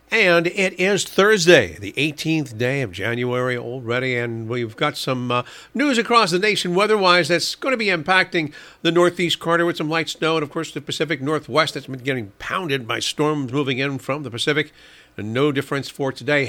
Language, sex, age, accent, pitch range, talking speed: English, male, 50-69, American, 135-175 Hz, 195 wpm